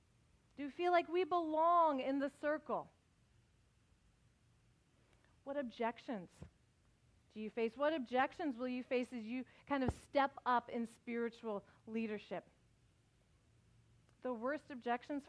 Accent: American